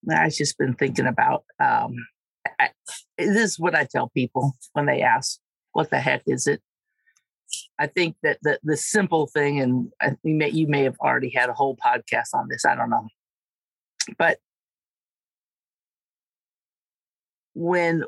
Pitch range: 140-210 Hz